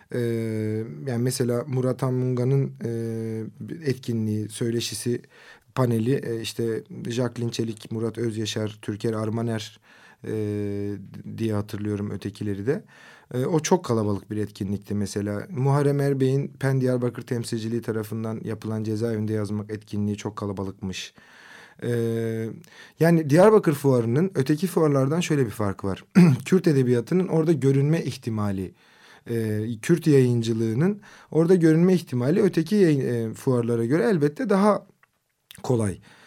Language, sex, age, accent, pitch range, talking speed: Turkish, male, 40-59, native, 110-160 Hz, 115 wpm